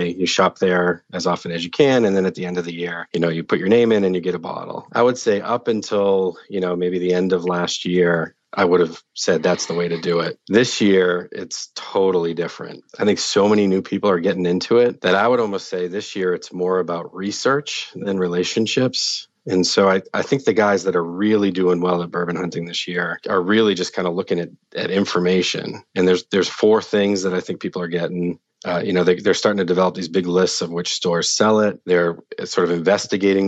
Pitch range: 85-100 Hz